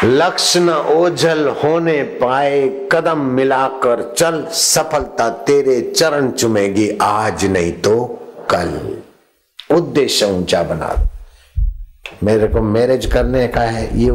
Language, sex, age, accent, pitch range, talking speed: Hindi, male, 60-79, native, 105-130 Hz, 90 wpm